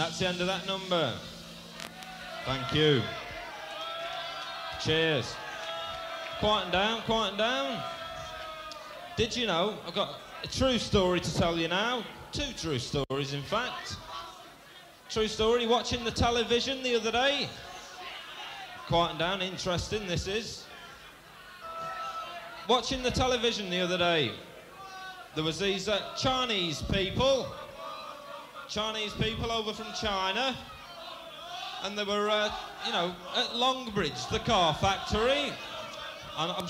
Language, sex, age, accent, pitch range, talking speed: English, male, 30-49, British, 180-245 Hz, 120 wpm